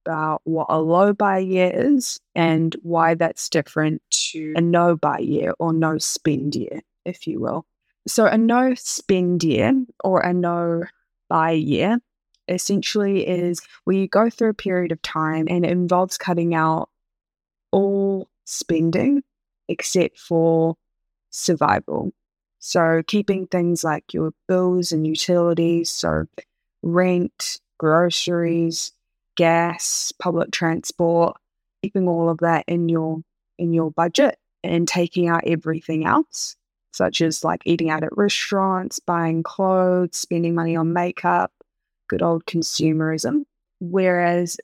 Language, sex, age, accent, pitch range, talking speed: English, female, 20-39, Australian, 165-190 Hz, 130 wpm